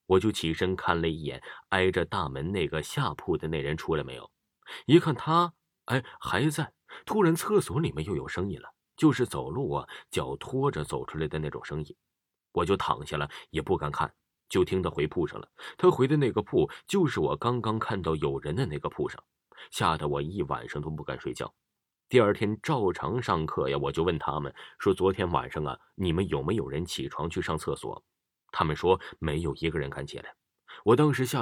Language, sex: Chinese, male